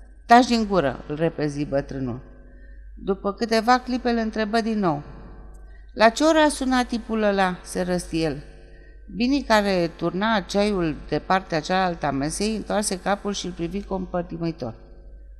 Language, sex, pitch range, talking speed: Romanian, female, 145-210 Hz, 135 wpm